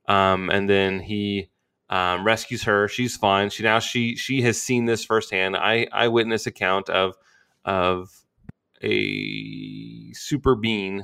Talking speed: 140 wpm